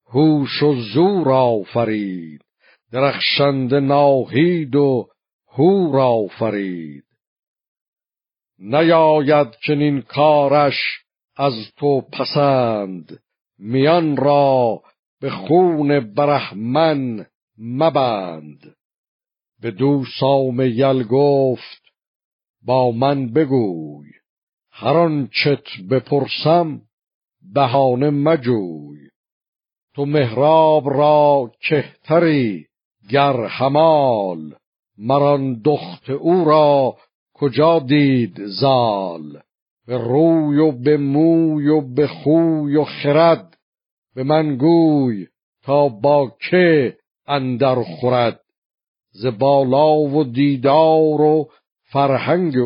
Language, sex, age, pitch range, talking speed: Persian, male, 60-79, 120-150 Hz, 80 wpm